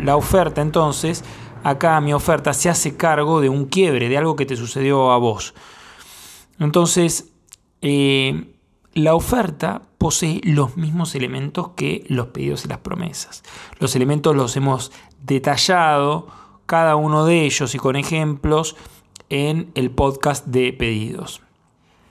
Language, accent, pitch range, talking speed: Spanish, Argentinian, 130-155 Hz, 135 wpm